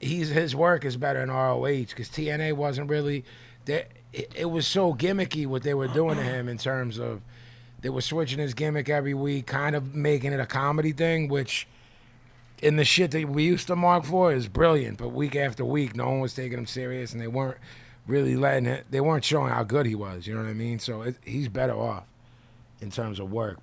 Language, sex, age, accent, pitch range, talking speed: English, male, 30-49, American, 115-140 Hz, 225 wpm